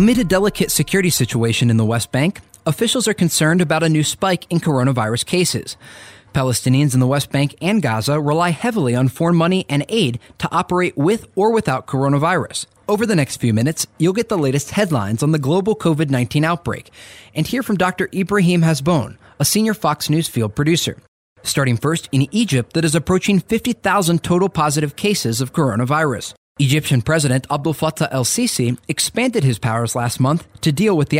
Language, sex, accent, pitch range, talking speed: English, male, American, 130-180 Hz, 180 wpm